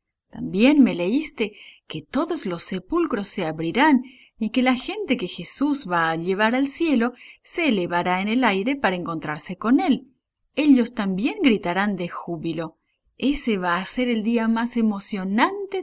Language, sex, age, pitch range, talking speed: English, female, 40-59, 165-255 Hz, 160 wpm